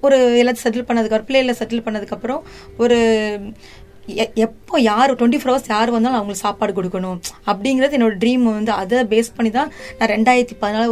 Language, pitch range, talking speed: Tamil, 210-240 Hz, 175 wpm